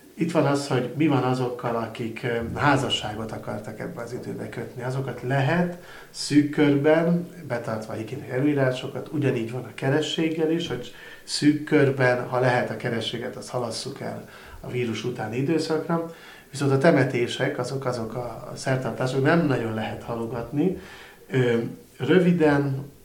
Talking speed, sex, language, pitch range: 135 wpm, male, Hungarian, 115-145 Hz